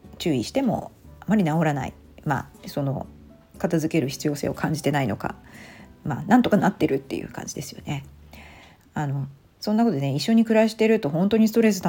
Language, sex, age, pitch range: Japanese, female, 40-59, 140-190 Hz